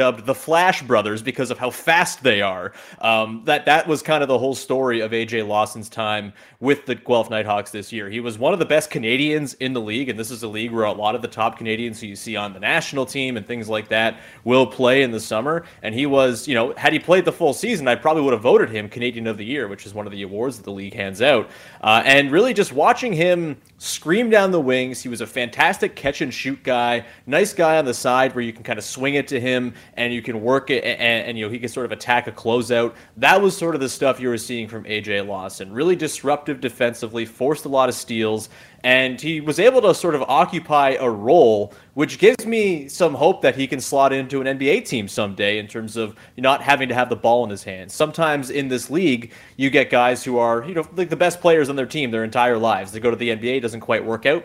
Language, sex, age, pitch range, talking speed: English, male, 30-49, 110-140 Hz, 255 wpm